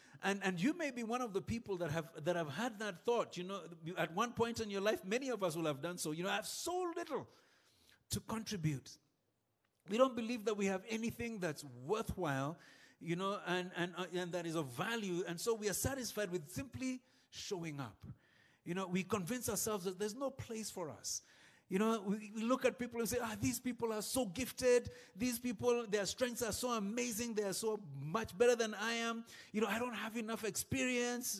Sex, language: male, English